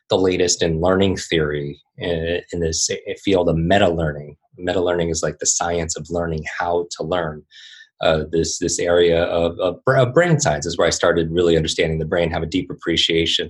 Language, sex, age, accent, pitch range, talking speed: English, male, 20-39, American, 80-95 Hz, 180 wpm